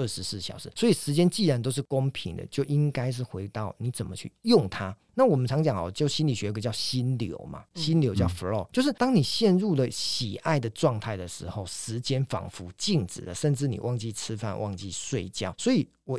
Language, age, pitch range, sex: Chinese, 40-59, 110-150 Hz, male